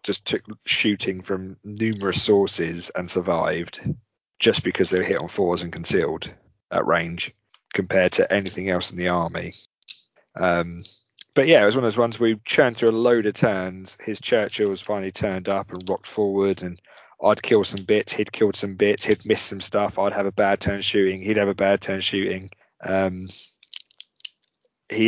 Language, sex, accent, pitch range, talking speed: English, male, British, 95-115 Hz, 185 wpm